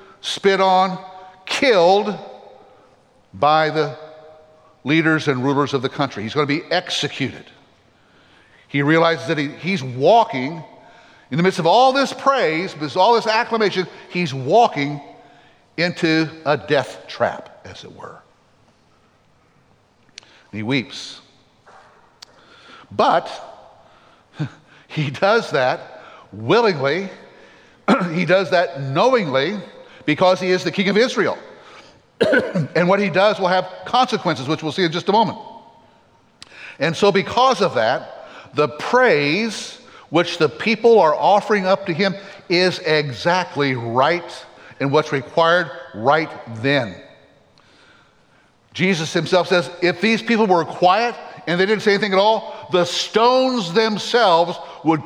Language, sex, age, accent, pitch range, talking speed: English, male, 60-79, American, 150-200 Hz, 130 wpm